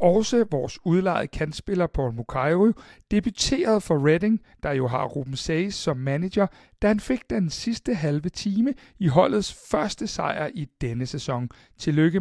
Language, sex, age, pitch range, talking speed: Danish, male, 60-79, 145-200 Hz, 150 wpm